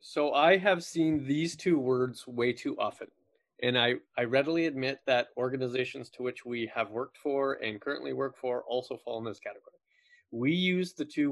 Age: 30-49